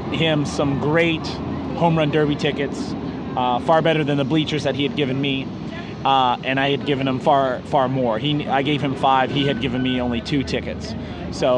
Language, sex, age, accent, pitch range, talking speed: English, male, 30-49, American, 130-150 Hz, 205 wpm